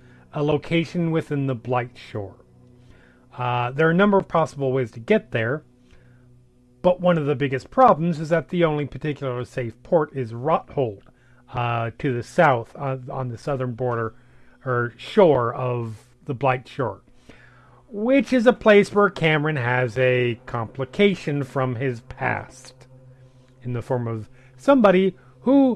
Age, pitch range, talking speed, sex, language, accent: 40-59, 125-160 Hz, 150 wpm, male, English, American